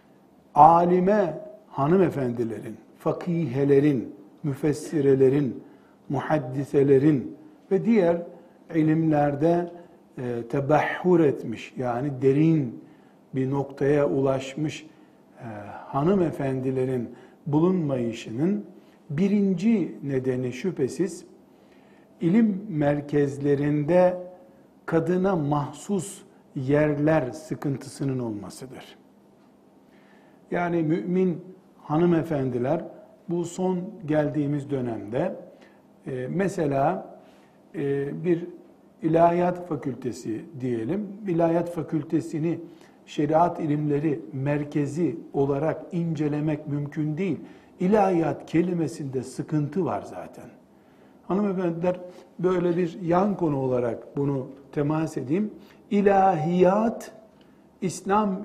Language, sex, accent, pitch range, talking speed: Turkish, male, native, 140-180 Hz, 70 wpm